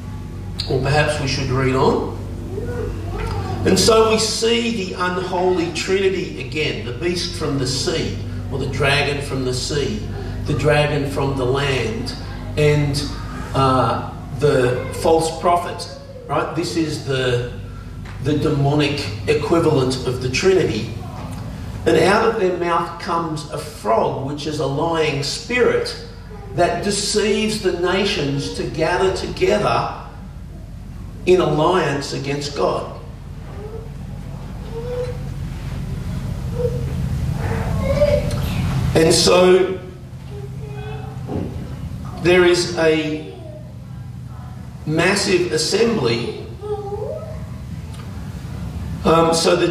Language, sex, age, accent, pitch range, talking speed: English, male, 50-69, Australian, 120-170 Hz, 95 wpm